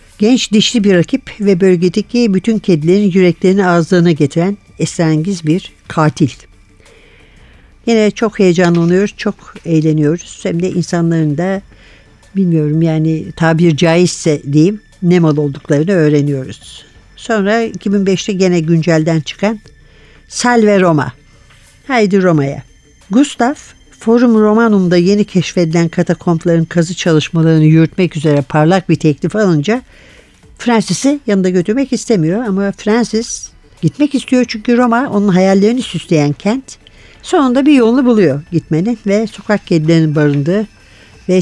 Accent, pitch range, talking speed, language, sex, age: native, 160-210 Hz, 115 wpm, Turkish, female, 60-79